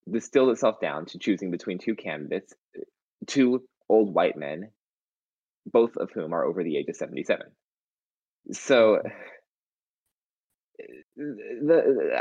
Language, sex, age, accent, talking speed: English, male, 20-39, American, 115 wpm